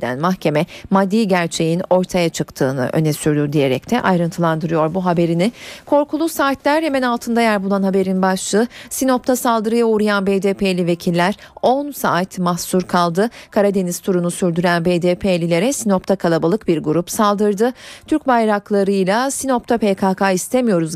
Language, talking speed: Turkish, 125 wpm